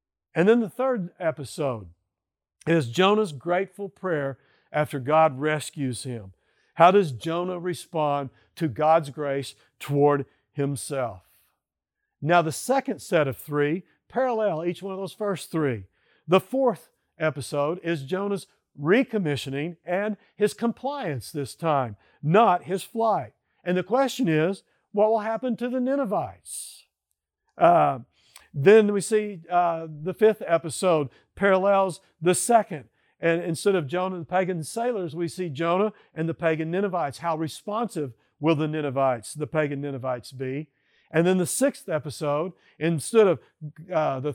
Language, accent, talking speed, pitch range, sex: English, American, 140 wpm, 145-190 Hz, male